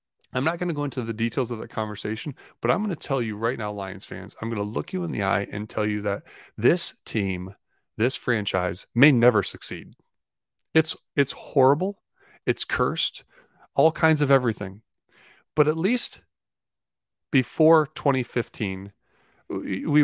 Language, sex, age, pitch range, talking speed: English, male, 30-49, 100-130 Hz, 165 wpm